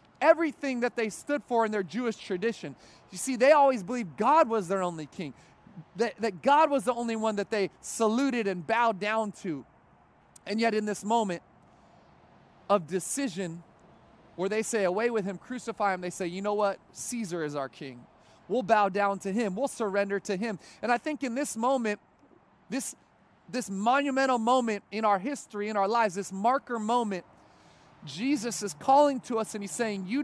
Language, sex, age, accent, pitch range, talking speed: English, male, 30-49, American, 205-265 Hz, 185 wpm